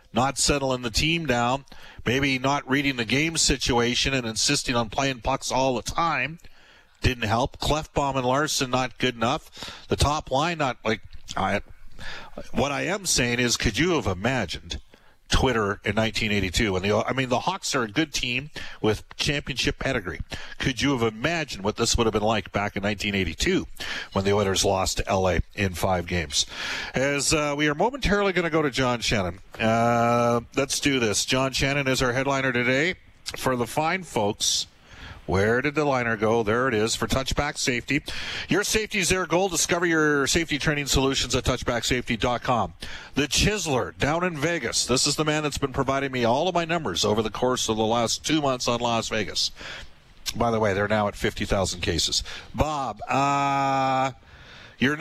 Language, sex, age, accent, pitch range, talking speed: English, male, 50-69, American, 110-145 Hz, 180 wpm